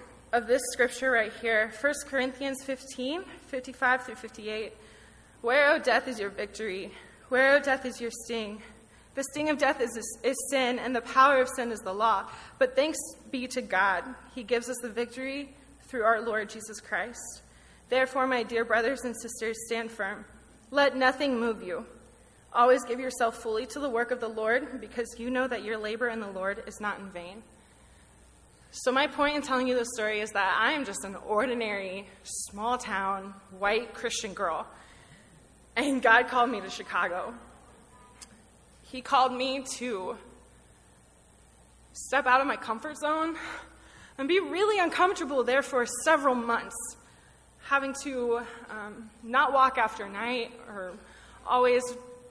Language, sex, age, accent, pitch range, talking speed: English, female, 20-39, American, 220-265 Hz, 160 wpm